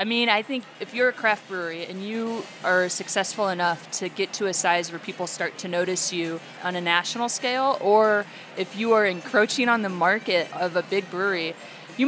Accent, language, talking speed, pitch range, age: American, English, 210 wpm, 175-205 Hz, 20-39